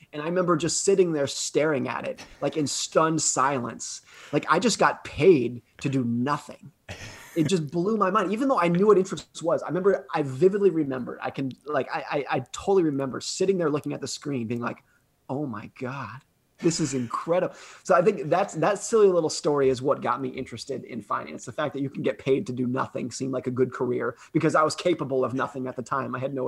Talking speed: 230 wpm